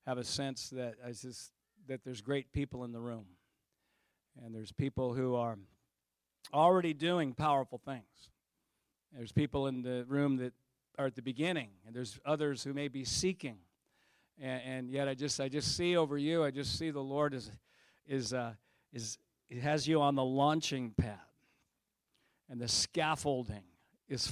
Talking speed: 170 wpm